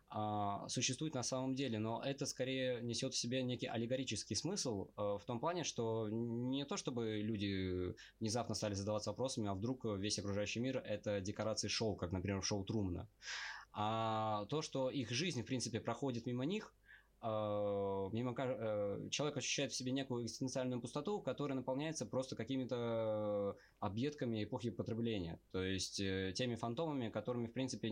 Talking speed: 150 wpm